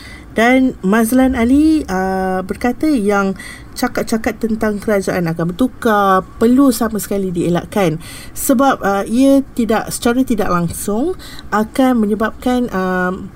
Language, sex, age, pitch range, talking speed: Malay, female, 30-49, 185-240 Hz, 110 wpm